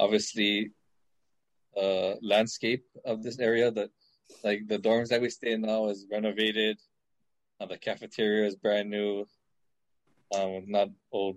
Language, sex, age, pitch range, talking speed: English, male, 20-39, 100-115 Hz, 135 wpm